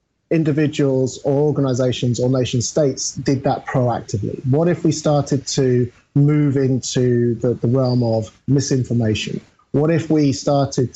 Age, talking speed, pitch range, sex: 30-49, 135 wpm, 125-150 Hz, male